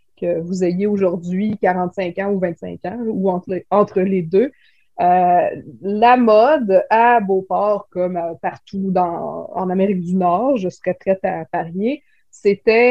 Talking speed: 140 wpm